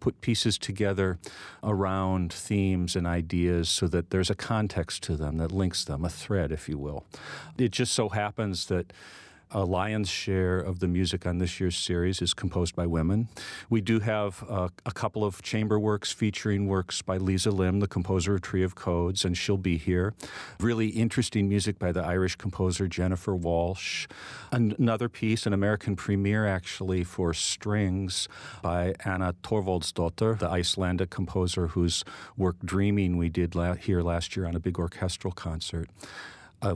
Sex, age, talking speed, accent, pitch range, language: male, 50-69, 165 wpm, American, 90-105 Hz, English